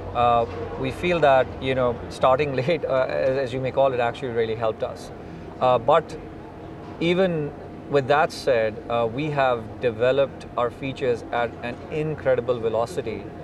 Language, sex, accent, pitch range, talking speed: English, male, Indian, 115-135 Hz, 150 wpm